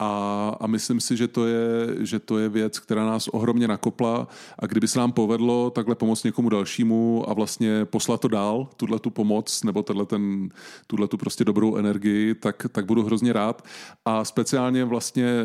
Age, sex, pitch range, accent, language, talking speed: 30-49, male, 105-120 Hz, native, Czech, 180 wpm